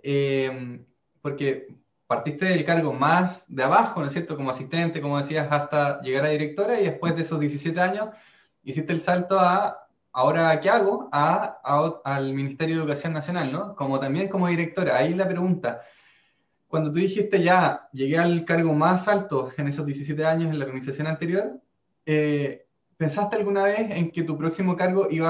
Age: 20-39